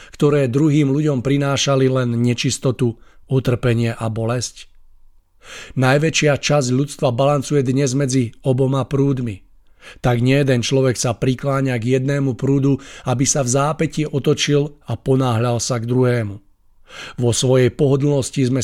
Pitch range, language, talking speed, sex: 120-140 Hz, Czech, 130 wpm, male